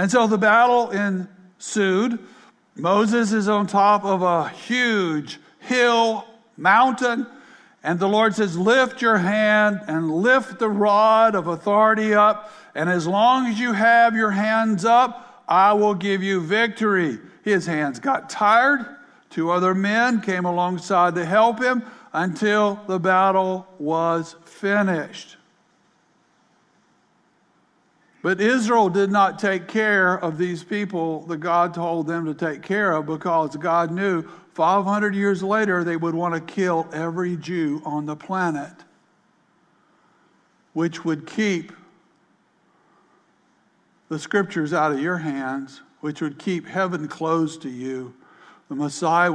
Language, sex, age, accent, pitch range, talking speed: English, male, 60-79, American, 165-210 Hz, 135 wpm